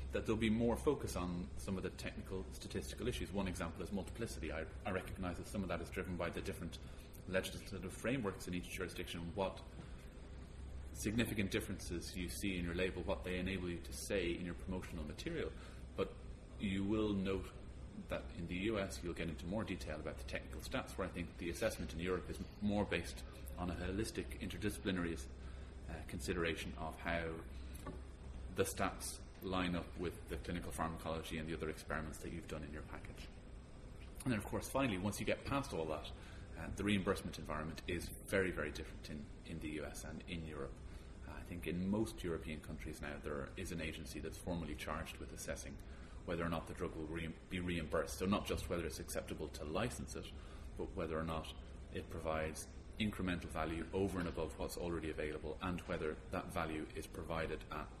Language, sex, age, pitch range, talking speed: English, male, 30-49, 80-95 Hz, 190 wpm